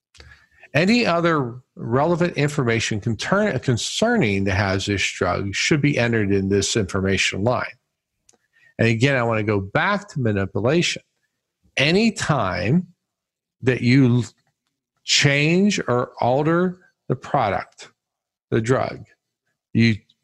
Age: 50-69